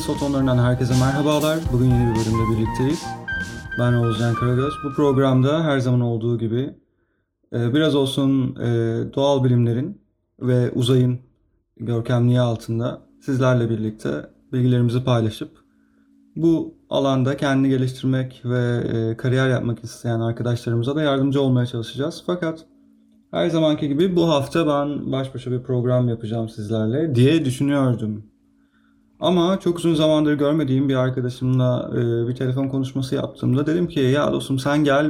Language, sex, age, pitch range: Turkish, male, 30-49, 115-140 Hz